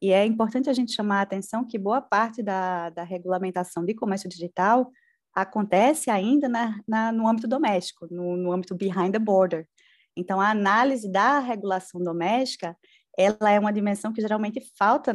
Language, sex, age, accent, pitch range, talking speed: Portuguese, female, 20-39, Brazilian, 190-245 Hz, 160 wpm